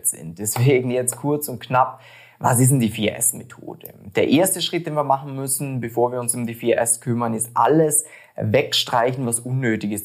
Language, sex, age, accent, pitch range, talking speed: German, male, 20-39, German, 120-155 Hz, 180 wpm